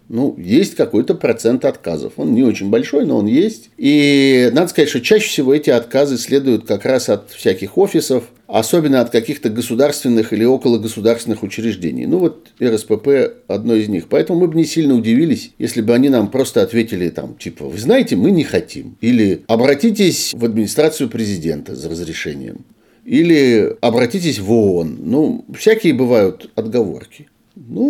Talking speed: 160 wpm